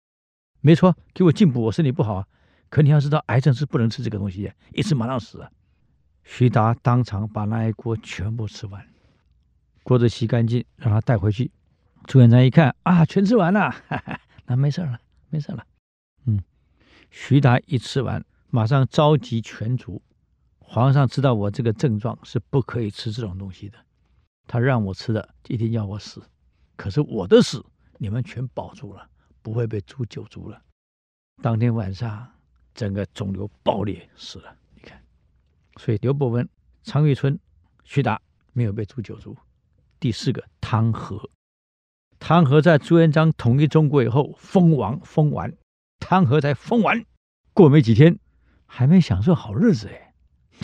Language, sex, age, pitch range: Chinese, male, 60-79, 100-145 Hz